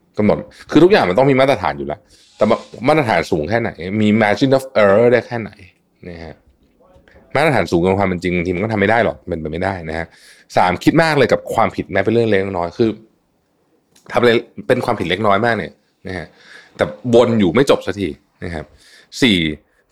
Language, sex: Thai, male